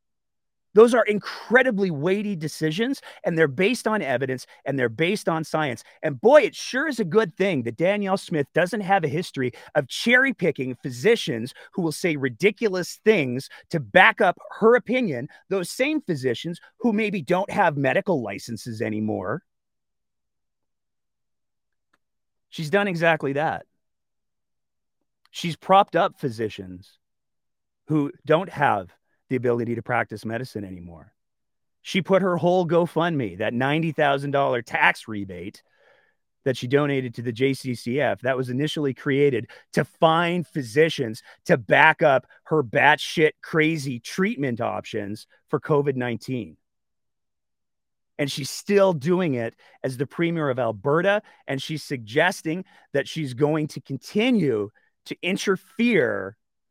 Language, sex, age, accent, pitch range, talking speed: English, male, 30-49, American, 130-185 Hz, 130 wpm